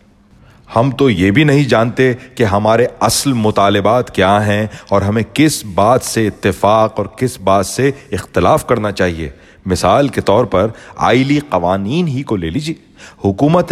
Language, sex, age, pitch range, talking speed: Urdu, male, 40-59, 100-135 Hz, 155 wpm